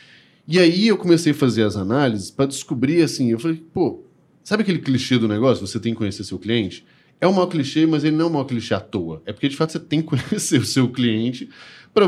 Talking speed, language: 250 wpm, Portuguese